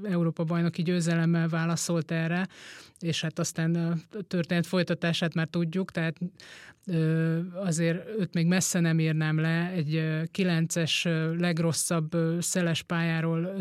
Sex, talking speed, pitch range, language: male, 105 wpm, 165-180 Hz, Hungarian